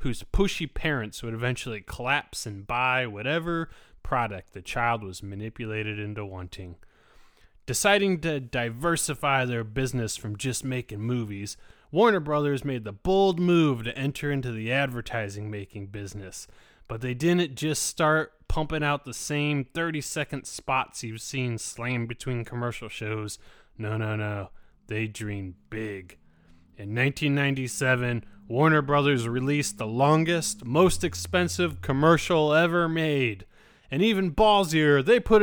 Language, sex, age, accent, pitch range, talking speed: English, male, 20-39, American, 115-160 Hz, 130 wpm